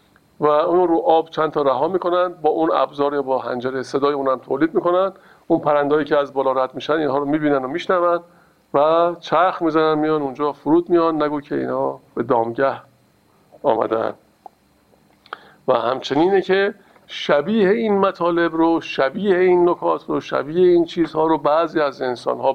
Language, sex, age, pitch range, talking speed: Persian, male, 50-69, 130-170 Hz, 160 wpm